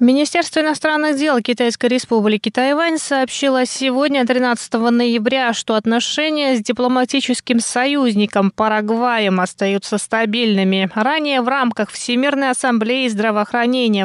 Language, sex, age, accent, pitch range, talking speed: Russian, female, 20-39, native, 205-255 Hz, 100 wpm